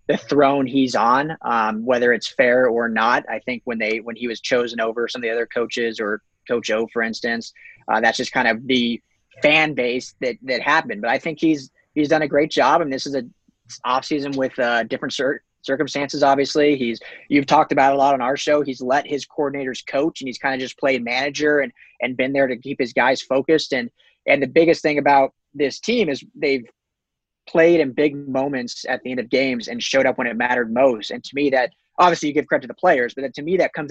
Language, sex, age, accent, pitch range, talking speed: English, male, 30-49, American, 125-145 Hz, 235 wpm